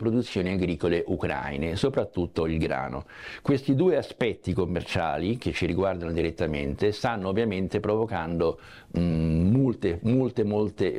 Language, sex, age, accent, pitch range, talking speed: Italian, male, 60-79, native, 85-115 Hz, 115 wpm